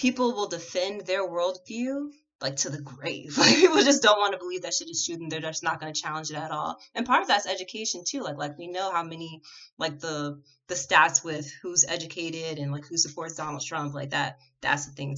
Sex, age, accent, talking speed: female, 20-39, American, 240 wpm